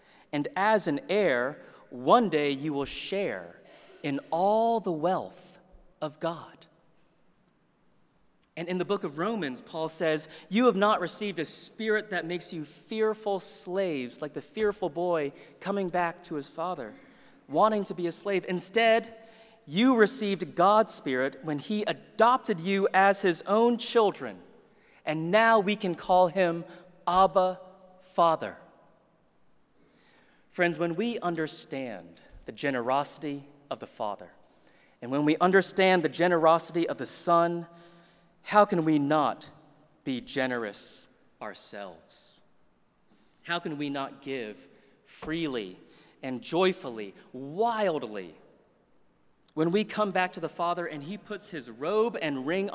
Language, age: English, 30-49